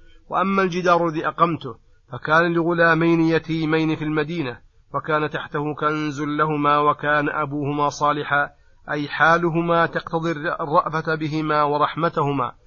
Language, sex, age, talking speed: Arabic, male, 40-59, 105 wpm